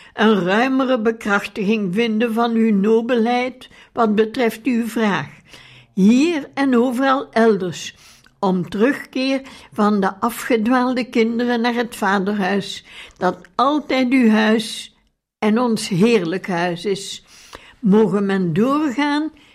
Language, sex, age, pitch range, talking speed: Dutch, female, 60-79, 205-245 Hz, 110 wpm